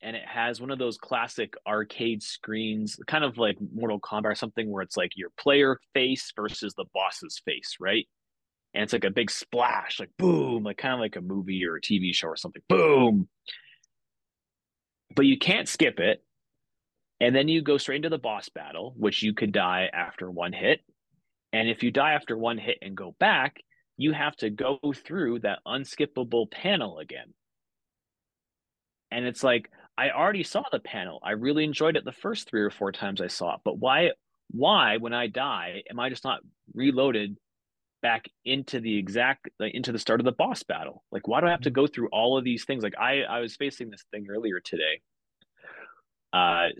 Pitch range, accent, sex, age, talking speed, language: 105-140 Hz, American, male, 30-49, 195 wpm, English